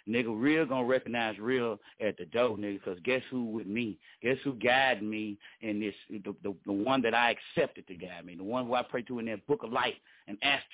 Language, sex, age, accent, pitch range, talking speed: English, male, 40-59, American, 105-130 Hz, 245 wpm